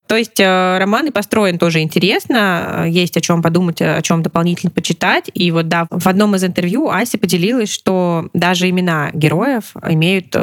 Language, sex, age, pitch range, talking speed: Russian, female, 20-39, 155-190 Hz, 165 wpm